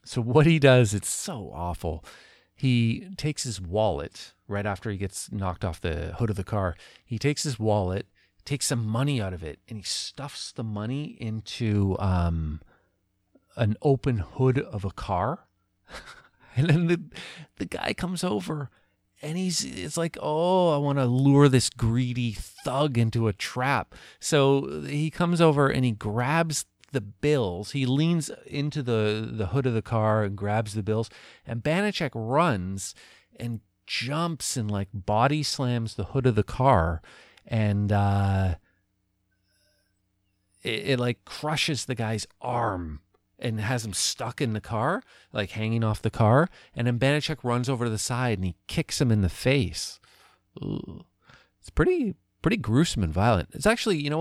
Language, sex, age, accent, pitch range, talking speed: English, male, 40-59, American, 100-140 Hz, 165 wpm